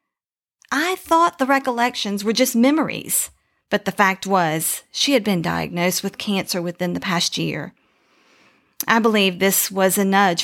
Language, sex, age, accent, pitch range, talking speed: English, female, 40-59, American, 175-230 Hz, 155 wpm